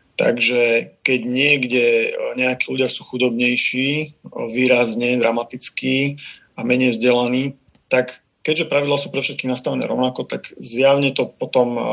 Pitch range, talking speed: 120-140 Hz, 120 wpm